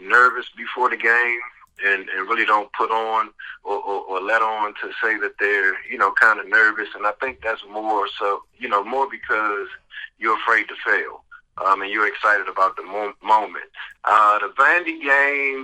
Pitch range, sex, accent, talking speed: 105-140 Hz, male, American, 190 wpm